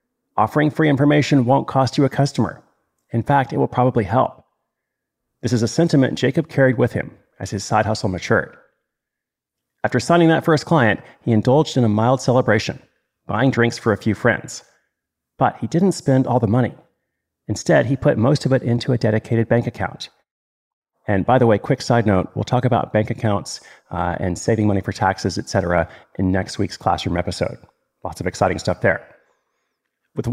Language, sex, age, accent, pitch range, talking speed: English, male, 40-59, American, 110-140 Hz, 180 wpm